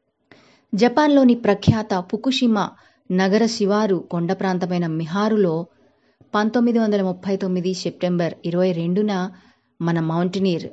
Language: Telugu